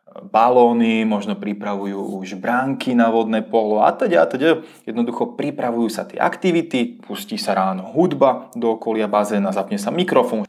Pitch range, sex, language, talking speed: 105-135 Hz, male, Czech, 155 wpm